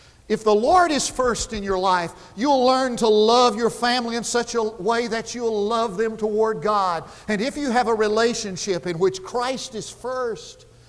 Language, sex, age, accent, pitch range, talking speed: English, male, 50-69, American, 170-230 Hz, 195 wpm